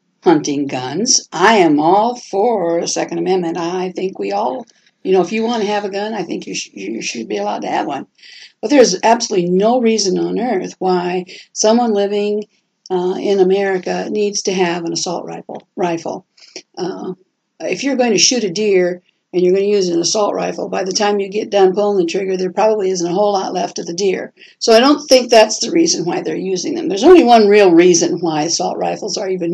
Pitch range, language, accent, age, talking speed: 180-220 Hz, English, American, 60-79, 220 wpm